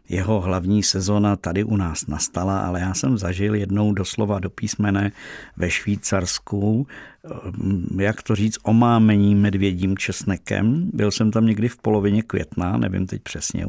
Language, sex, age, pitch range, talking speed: Czech, male, 50-69, 95-110 Hz, 145 wpm